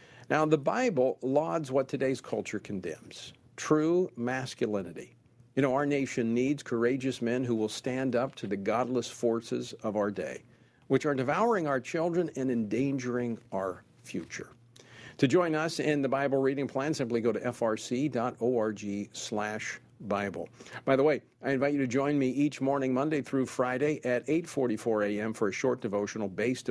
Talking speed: 165 wpm